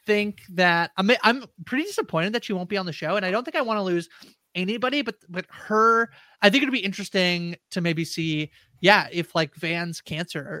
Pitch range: 155-190 Hz